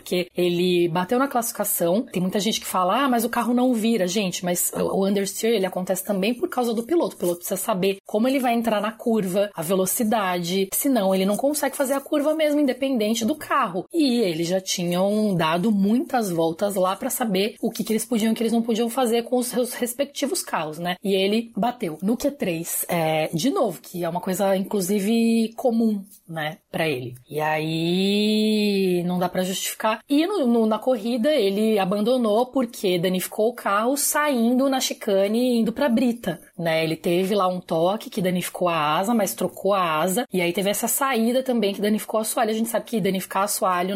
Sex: female